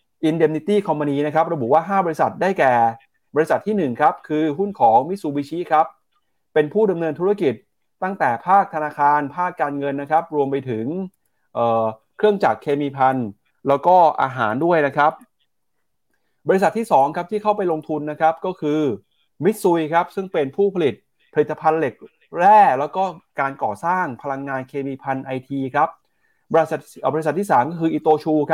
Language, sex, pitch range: Thai, male, 135-175 Hz